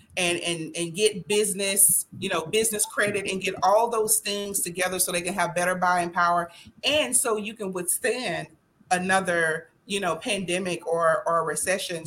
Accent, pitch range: American, 170-210 Hz